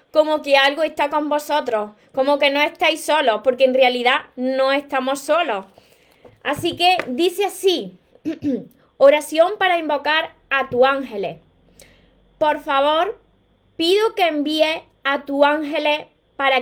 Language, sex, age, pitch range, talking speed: Spanish, female, 20-39, 265-330 Hz, 130 wpm